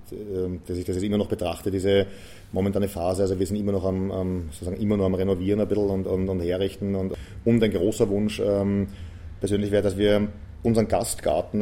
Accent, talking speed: German, 185 wpm